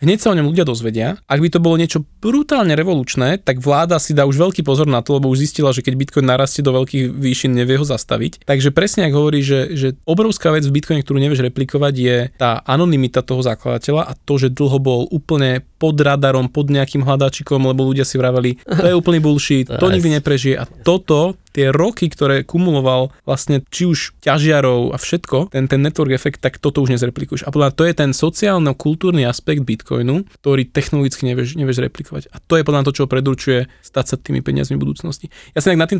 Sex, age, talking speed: male, 20-39, 205 wpm